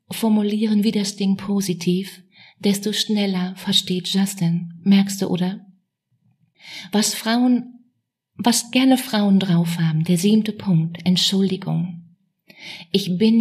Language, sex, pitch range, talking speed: German, female, 175-200 Hz, 110 wpm